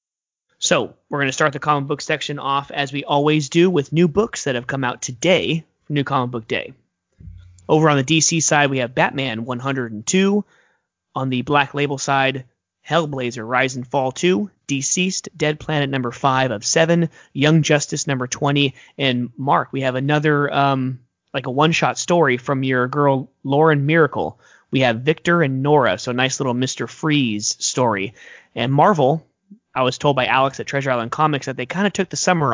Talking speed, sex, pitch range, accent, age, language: 185 wpm, male, 125-150 Hz, American, 30-49, English